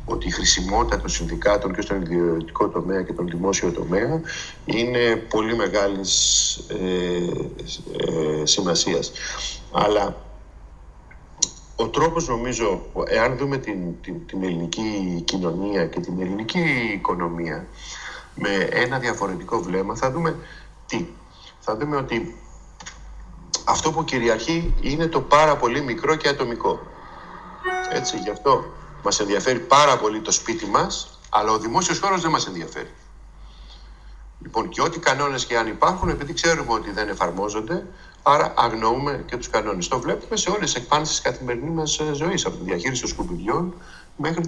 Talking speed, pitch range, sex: 140 wpm, 100-165 Hz, male